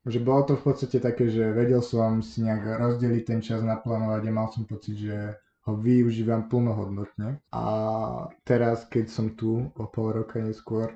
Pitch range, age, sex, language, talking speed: 105-115 Hz, 20-39, male, Slovak, 175 wpm